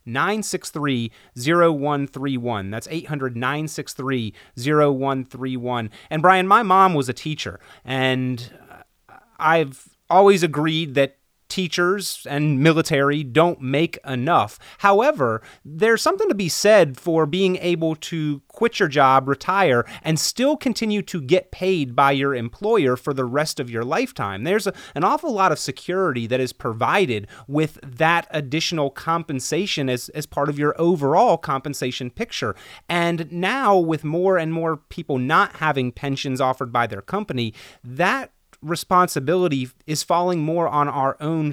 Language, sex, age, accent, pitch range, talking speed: English, male, 30-49, American, 130-175 Hz, 135 wpm